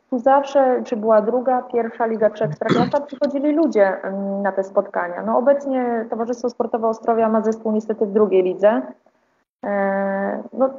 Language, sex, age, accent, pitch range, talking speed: Polish, female, 20-39, native, 215-255 Hz, 140 wpm